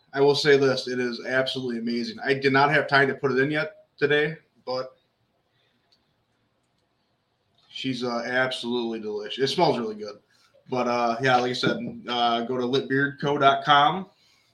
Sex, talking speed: male, 155 wpm